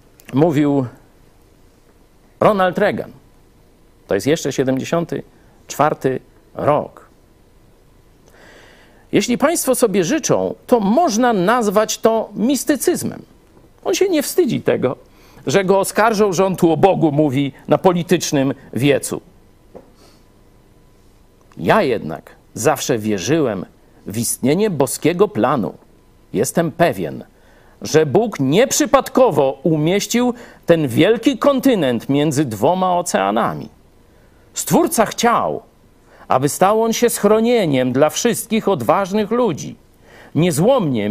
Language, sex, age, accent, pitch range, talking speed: Polish, male, 50-69, native, 155-225 Hz, 95 wpm